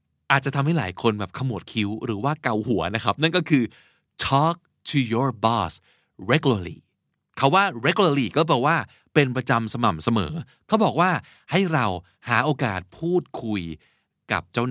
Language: Thai